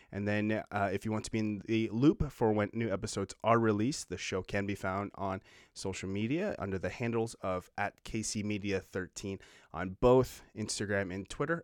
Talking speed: 195 wpm